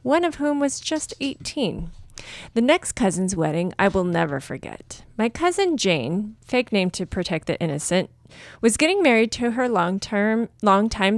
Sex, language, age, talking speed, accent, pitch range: female, English, 30-49, 160 wpm, American, 180-245 Hz